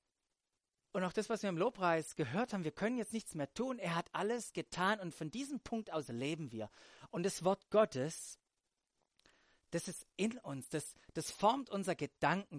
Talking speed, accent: 185 wpm, German